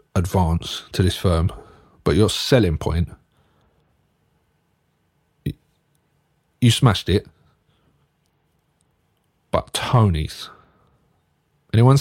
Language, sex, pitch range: English, male, 90-115 Hz